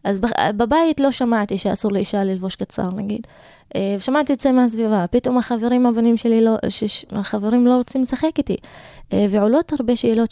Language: Hebrew